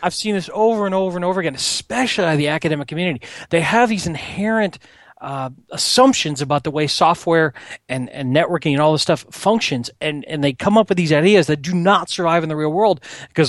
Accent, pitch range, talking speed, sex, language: American, 135-185 Hz, 215 wpm, male, English